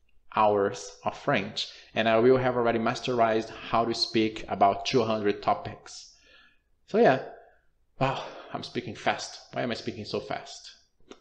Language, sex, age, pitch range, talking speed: Portuguese, male, 20-39, 105-130 Hz, 145 wpm